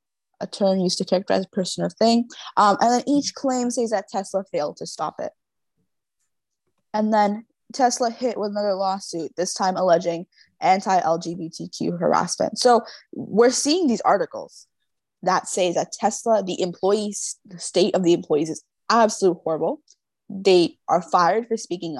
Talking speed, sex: 155 wpm, female